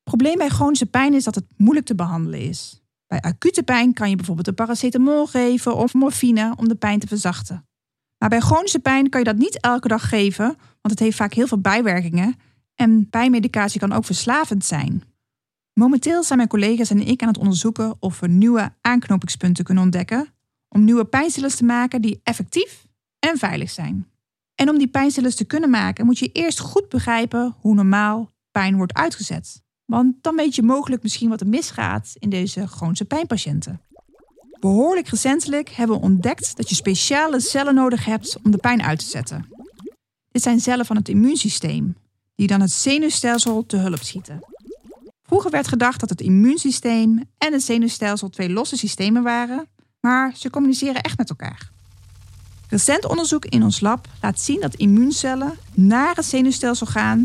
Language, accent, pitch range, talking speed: Dutch, Dutch, 190-255 Hz, 175 wpm